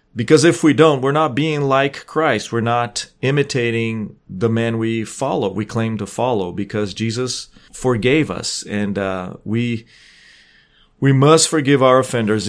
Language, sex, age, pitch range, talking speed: English, male, 40-59, 105-130 Hz, 155 wpm